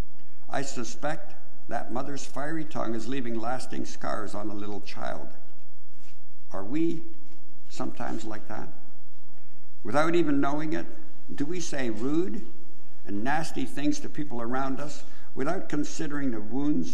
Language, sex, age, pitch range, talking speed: English, male, 60-79, 110-150 Hz, 135 wpm